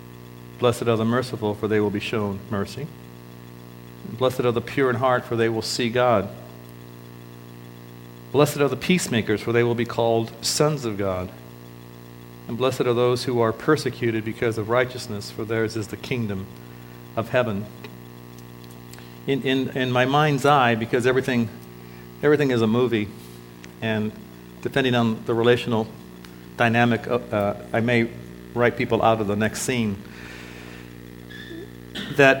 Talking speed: 145 wpm